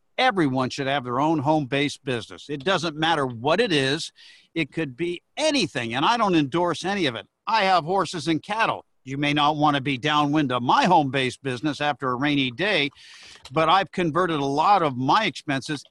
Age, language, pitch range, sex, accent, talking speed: 50-69, English, 140-180 Hz, male, American, 195 wpm